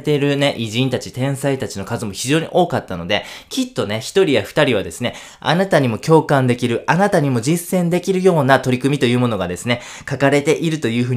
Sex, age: male, 20-39